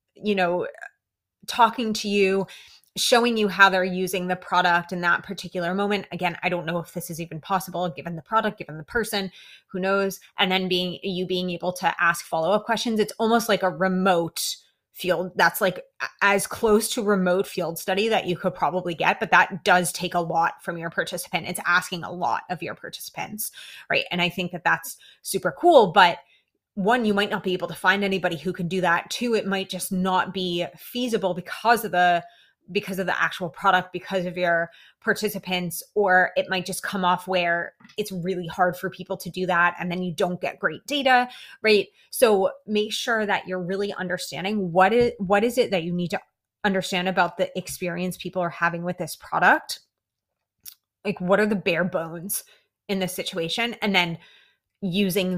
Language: English